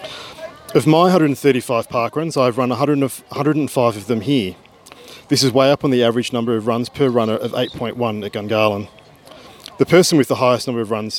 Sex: male